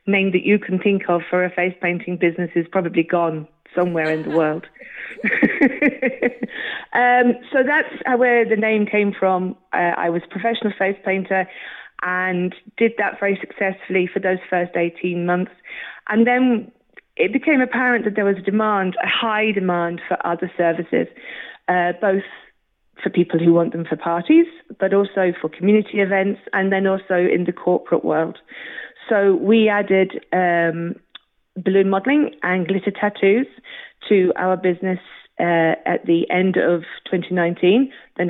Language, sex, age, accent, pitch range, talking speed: English, female, 30-49, British, 175-215 Hz, 155 wpm